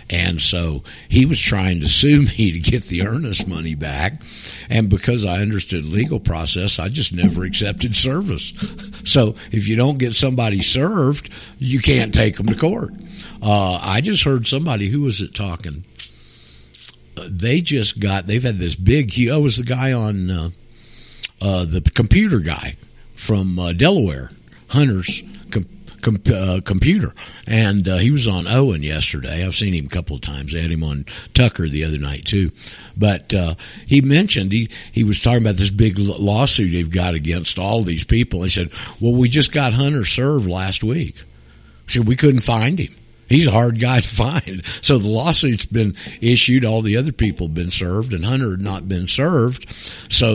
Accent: American